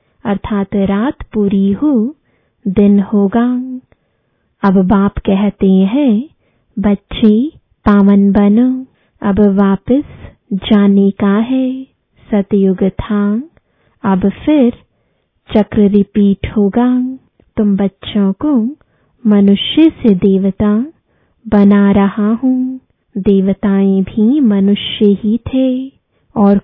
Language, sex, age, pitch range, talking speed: English, female, 20-39, 200-255 Hz, 90 wpm